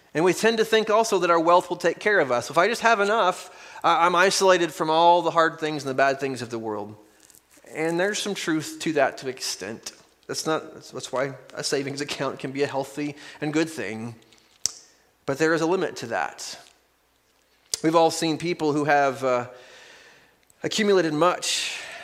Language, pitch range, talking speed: English, 130-175 Hz, 195 wpm